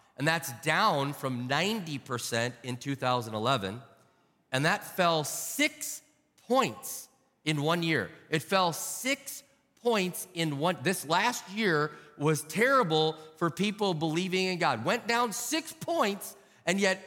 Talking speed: 130 wpm